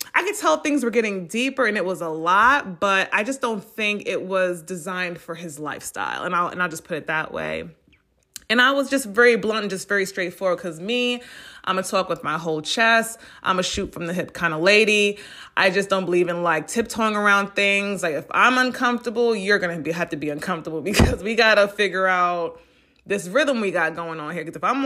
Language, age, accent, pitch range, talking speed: English, 20-39, American, 180-235 Hz, 230 wpm